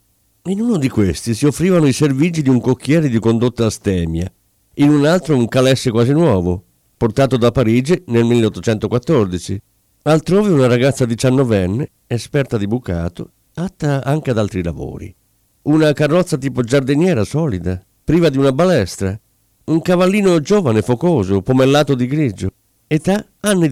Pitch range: 110-160 Hz